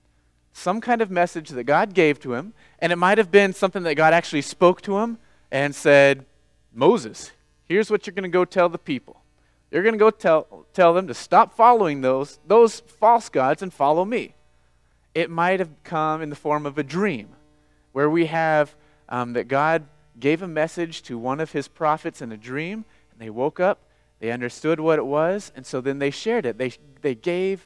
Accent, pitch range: American, 130-165 Hz